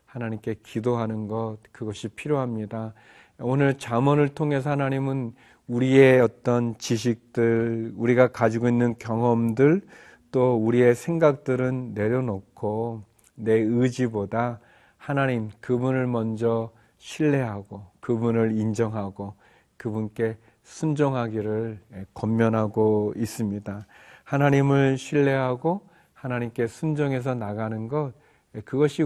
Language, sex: Korean, male